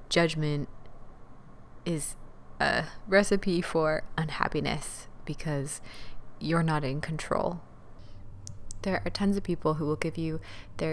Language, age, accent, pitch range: English, 20-39, American, 120-185 Hz